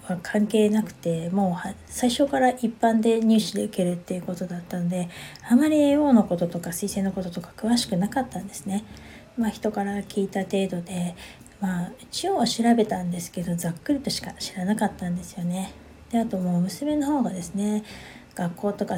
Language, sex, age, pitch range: Japanese, female, 20-39, 180-225 Hz